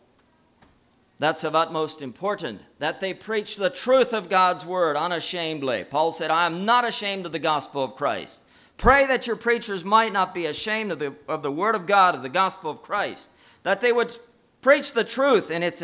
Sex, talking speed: male, 195 wpm